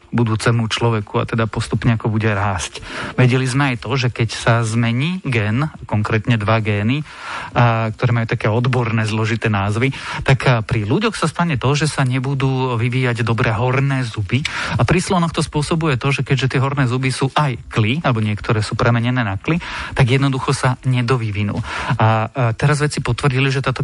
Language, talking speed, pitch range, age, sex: Slovak, 180 wpm, 115-135 Hz, 30-49, male